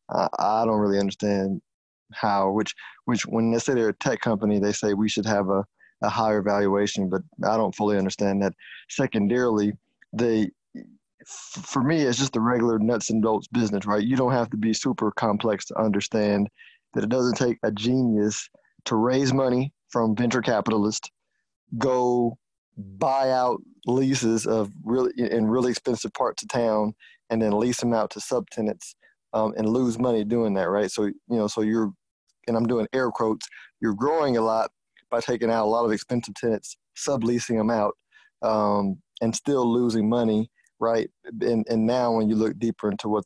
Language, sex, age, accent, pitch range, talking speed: English, male, 20-39, American, 105-120 Hz, 180 wpm